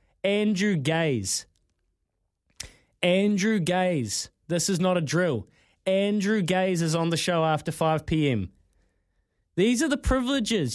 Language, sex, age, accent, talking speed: English, male, 20-39, Australian, 115 wpm